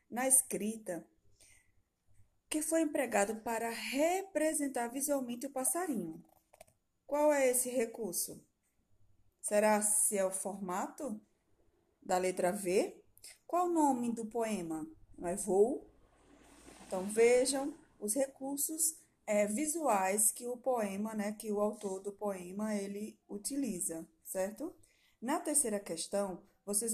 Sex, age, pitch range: female, 20-39, 190-265 Hz